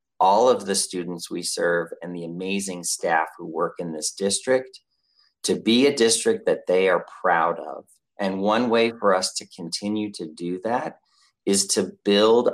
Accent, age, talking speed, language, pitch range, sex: American, 40-59, 175 wpm, English, 90-115 Hz, male